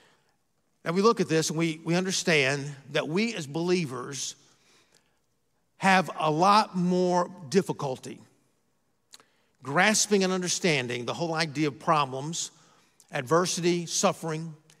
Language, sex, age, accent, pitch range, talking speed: English, male, 50-69, American, 155-205 Hz, 115 wpm